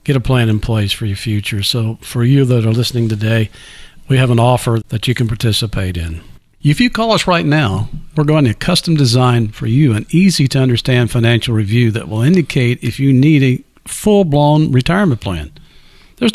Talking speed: 190 wpm